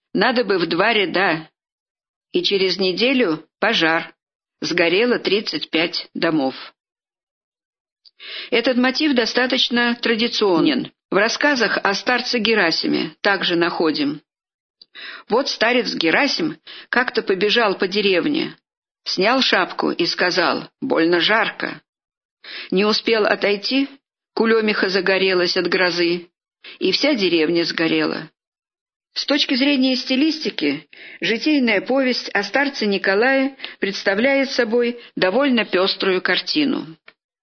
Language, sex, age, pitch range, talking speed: Russian, female, 50-69, 195-270 Hz, 100 wpm